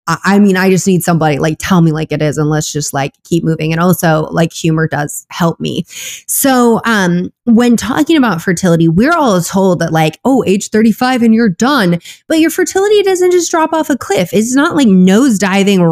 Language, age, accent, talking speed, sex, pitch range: English, 20-39, American, 210 wpm, female, 170-250 Hz